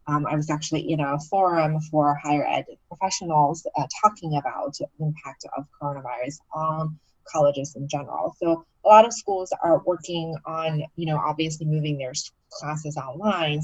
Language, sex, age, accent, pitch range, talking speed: English, female, 20-39, American, 150-185 Hz, 165 wpm